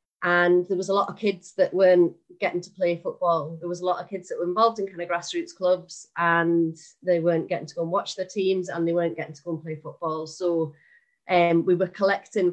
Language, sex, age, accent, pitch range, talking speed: English, female, 30-49, British, 170-195 Hz, 245 wpm